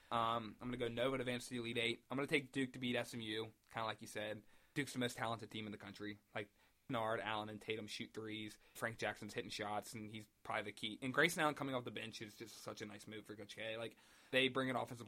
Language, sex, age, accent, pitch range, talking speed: English, male, 20-39, American, 110-135 Hz, 280 wpm